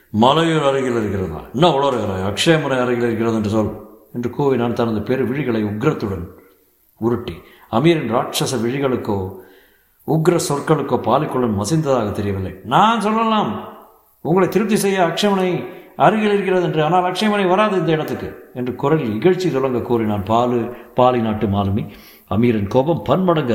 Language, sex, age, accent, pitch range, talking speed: Tamil, male, 60-79, native, 110-165 Hz, 125 wpm